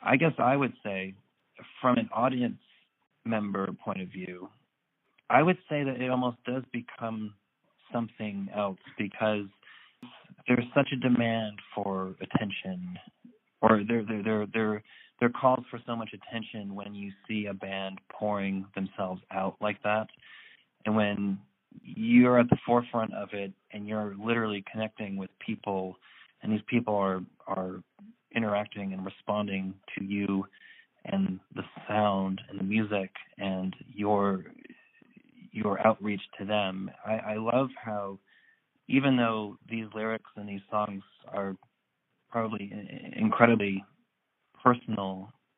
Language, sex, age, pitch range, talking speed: English, male, 40-59, 100-120 Hz, 135 wpm